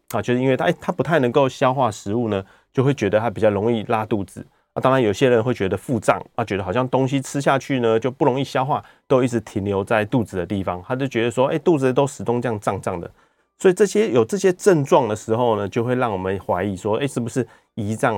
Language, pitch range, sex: Chinese, 105-135 Hz, male